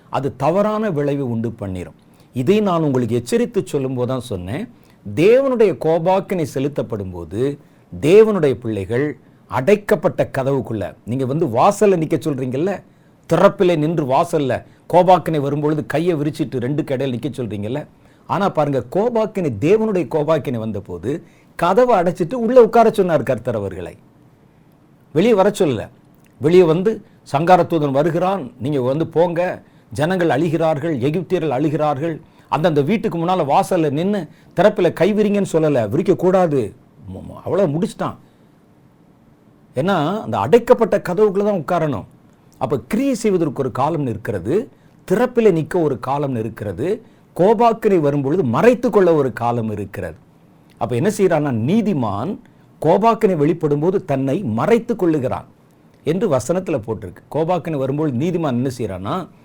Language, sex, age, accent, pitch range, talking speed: Tamil, male, 50-69, native, 135-190 Hz, 115 wpm